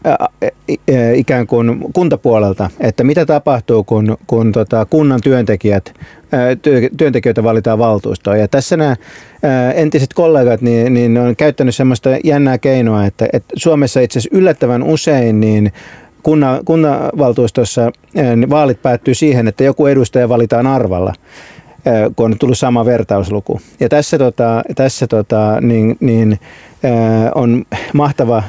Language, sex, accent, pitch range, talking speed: Finnish, male, native, 110-140 Hz, 125 wpm